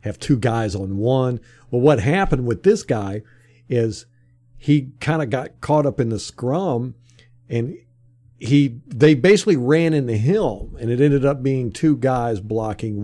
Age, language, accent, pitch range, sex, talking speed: 50-69, English, American, 115-140 Hz, male, 165 wpm